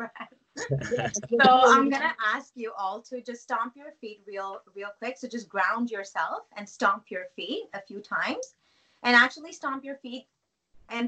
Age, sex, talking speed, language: 30-49, female, 170 wpm, English